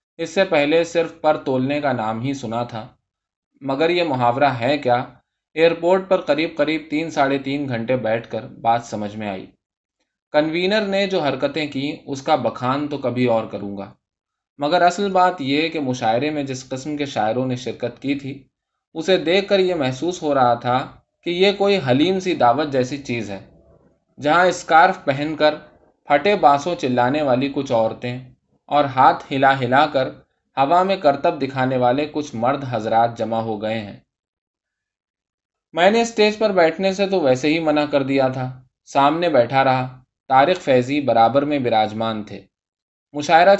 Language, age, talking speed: Urdu, 20-39, 175 wpm